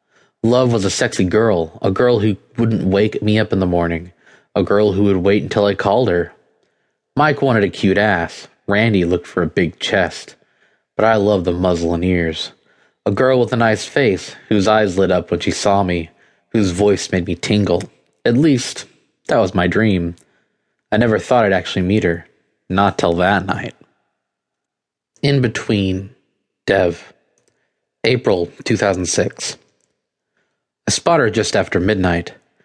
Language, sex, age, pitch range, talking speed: English, male, 20-39, 90-110 Hz, 160 wpm